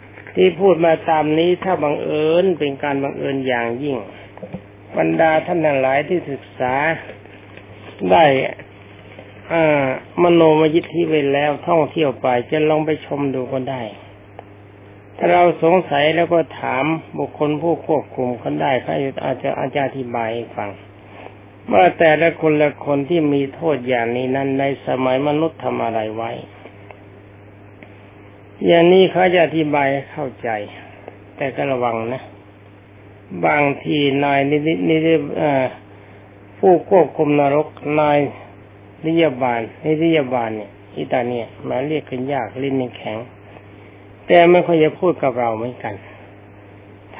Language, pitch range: Thai, 100-155 Hz